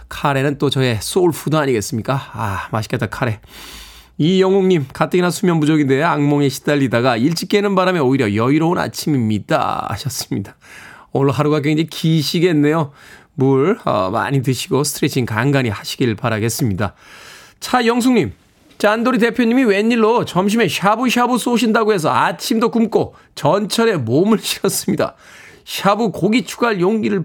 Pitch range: 135-195 Hz